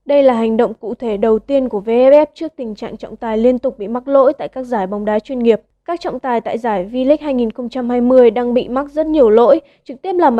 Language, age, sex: Vietnamese, 20-39, female